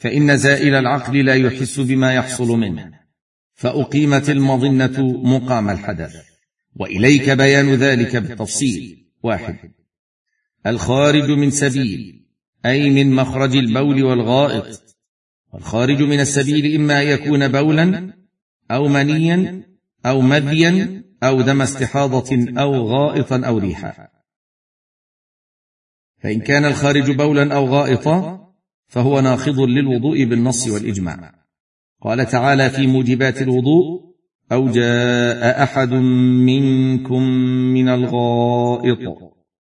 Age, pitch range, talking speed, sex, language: 50-69, 120-145 Hz, 95 wpm, male, Arabic